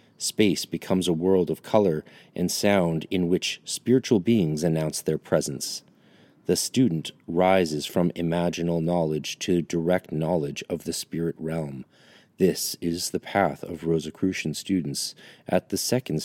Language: English